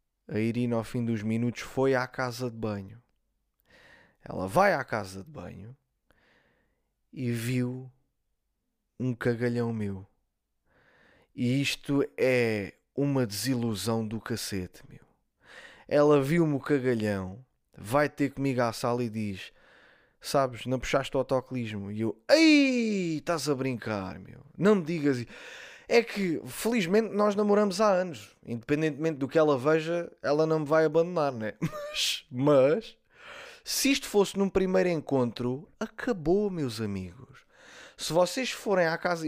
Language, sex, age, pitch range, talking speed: Portuguese, male, 20-39, 120-170 Hz, 140 wpm